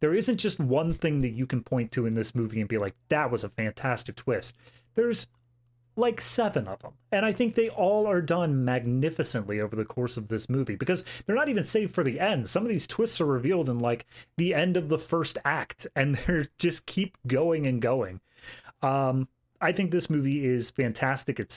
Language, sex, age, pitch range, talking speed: English, male, 30-49, 115-145 Hz, 215 wpm